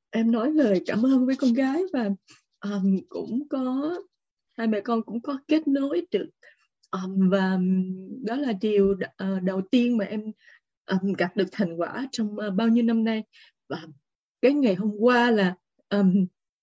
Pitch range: 195-265 Hz